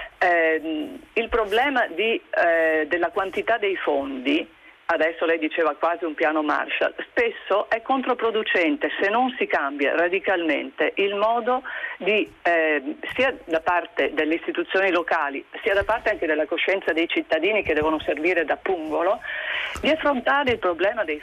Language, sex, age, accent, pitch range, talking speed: Italian, female, 40-59, native, 155-240 Hz, 145 wpm